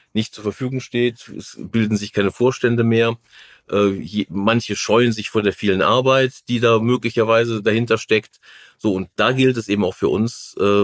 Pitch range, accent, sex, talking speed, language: 100-125 Hz, German, male, 170 wpm, German